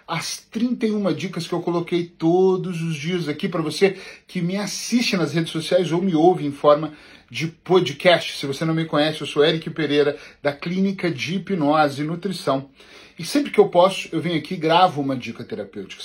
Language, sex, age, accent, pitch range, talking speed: Portuguese, male, 40-59, Brazilian, 145-195 Hz, 200 wpm